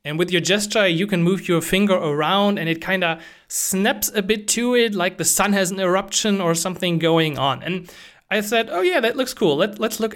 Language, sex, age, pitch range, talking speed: English, male, 30-49, 160-205 Hz, 235 wpm